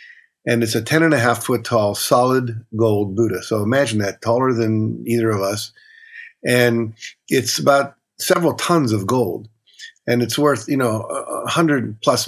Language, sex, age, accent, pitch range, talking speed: English, male, 50-69, American, 110-125 Hz, 145 wpm